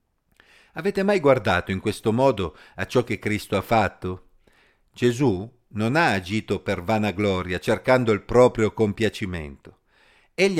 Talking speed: 135 wpm